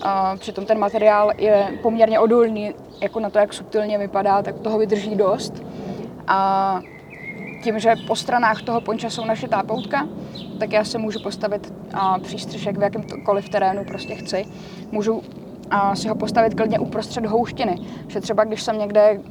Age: 20-39